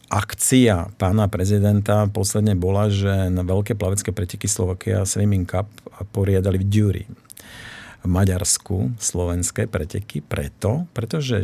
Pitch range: 95-110 Hz